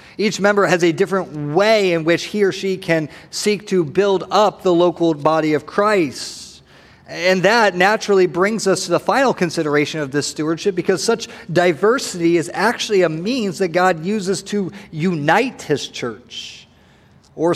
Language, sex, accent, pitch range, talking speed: English, male, American, 130-180 Hz, 165 wpm